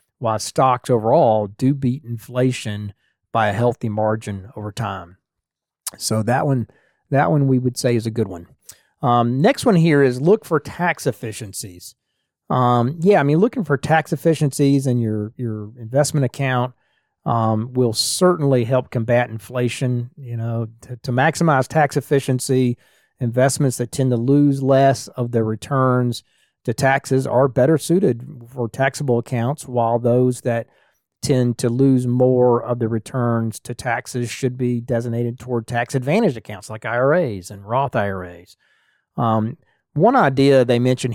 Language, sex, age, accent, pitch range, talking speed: English, male, 40-59, American, 115-135 Hz, 150 wpm